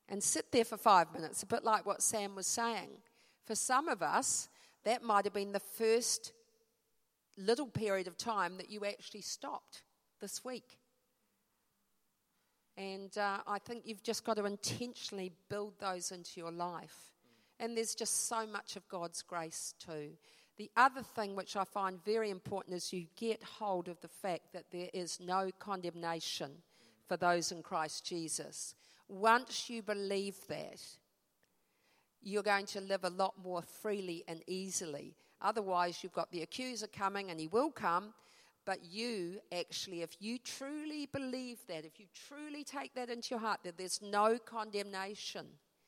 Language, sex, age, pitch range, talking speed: English, female, 50-69, 180-225 Hz, 165 wpm